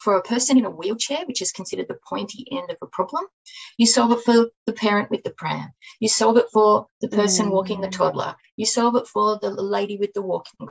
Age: 30-49